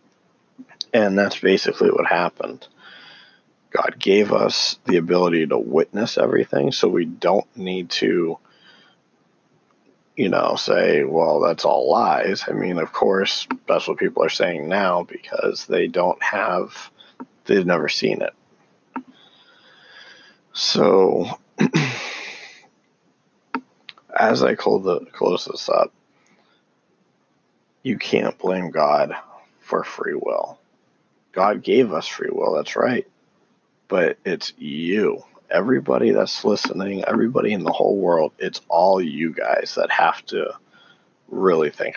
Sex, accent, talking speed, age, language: male, American, 120 wpm, 40-59, English